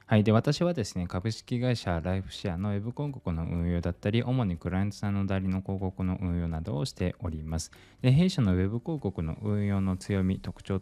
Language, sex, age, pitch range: Japanese, male, 20-39, 90-125 Hz